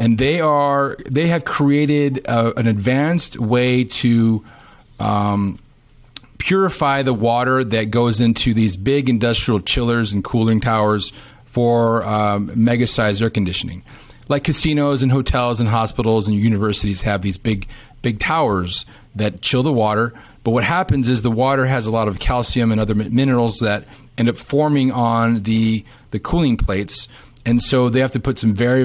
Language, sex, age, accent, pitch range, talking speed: English, male, 40-59, American, 110-130 Hz, 165 wpm